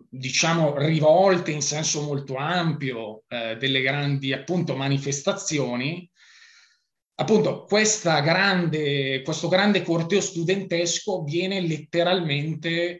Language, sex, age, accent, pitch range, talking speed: Italian, male, 30-49, native, 145-195 Hz, 90 wpm